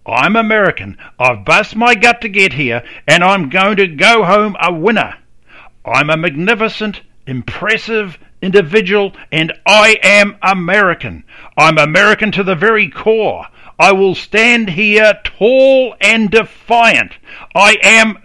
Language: English